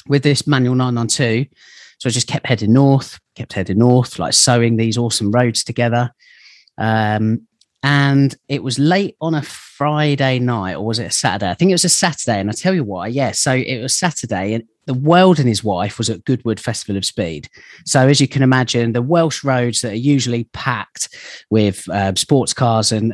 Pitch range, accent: 115-135 Hz, British